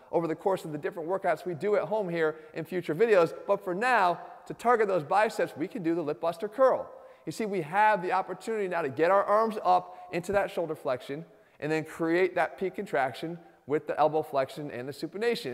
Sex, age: male, 30-49